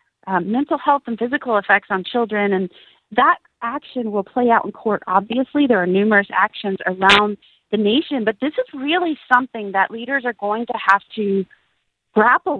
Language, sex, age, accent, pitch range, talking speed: English, female, 40-59, American, 190-250 Hz, 175 wpm